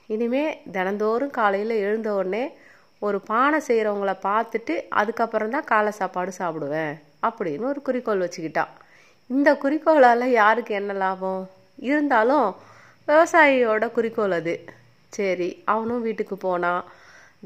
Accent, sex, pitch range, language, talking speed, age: native, female, 190-240 Hz, Tamil, 100 wpm, 30-49